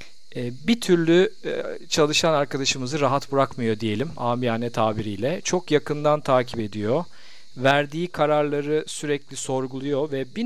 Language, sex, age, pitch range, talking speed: Turkish, male, 40-59, 125-160 Hz, 110 wpm